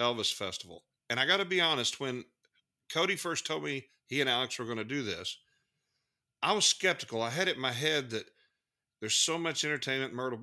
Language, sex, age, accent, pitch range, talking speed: English, male, 50-69, American, 115-140 Hz, 205 wpm